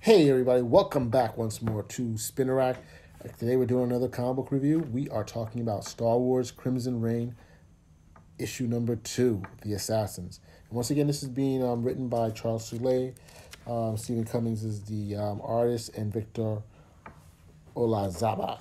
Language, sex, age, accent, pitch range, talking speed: English, male, 40-59, American, 105-125 Hz, 160 wpm